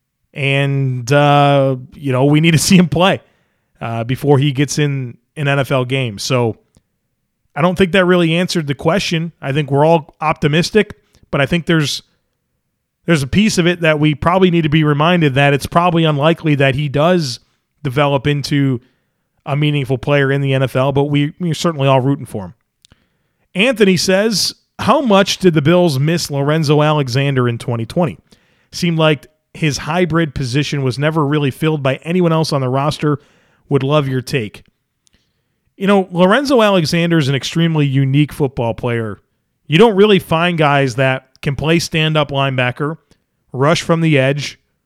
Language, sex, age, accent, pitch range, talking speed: English, male, 30-49, American, 135-170 Hz, 170 wpm